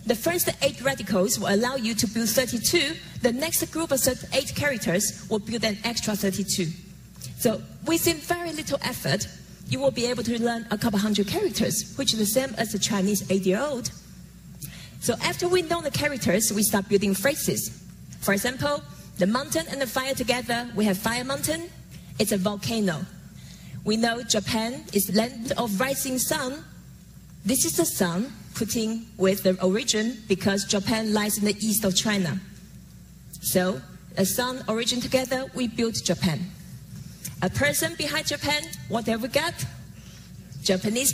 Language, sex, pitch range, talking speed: English, female, 195-255 Hz, 160 wpm